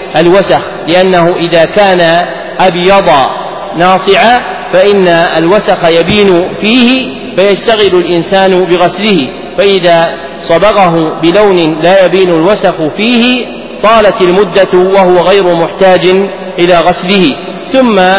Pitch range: 170-195 Hz